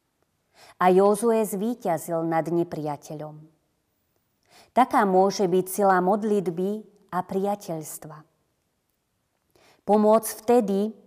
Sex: female